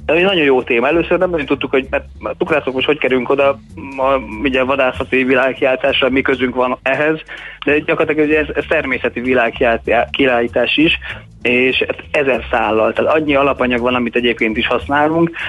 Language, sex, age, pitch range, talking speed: Hungarian, male, 30-49, 120-130 Hz, 165 wpm